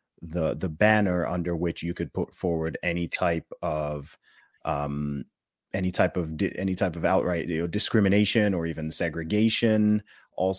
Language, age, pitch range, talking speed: English, 30-49, 80-100 Hz, 160 wpm